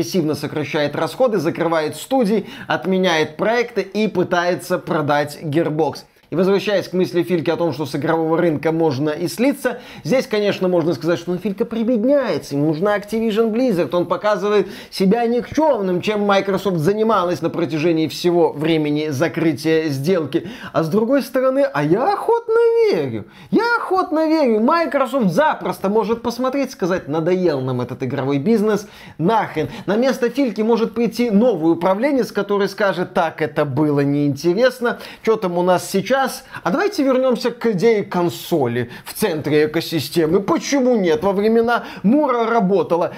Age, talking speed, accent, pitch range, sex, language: 20-39, 145 wpm, native, 165-230 Hz, male, Russian